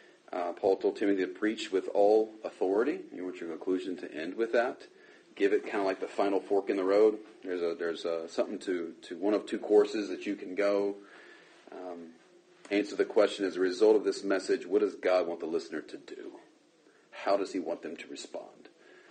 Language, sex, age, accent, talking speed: English, male, 40-59, American, 215 wpm